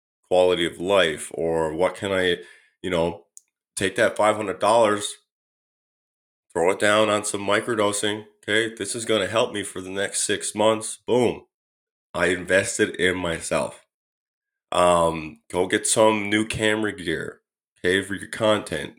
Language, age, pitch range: English, 20-39, 95-120 Hz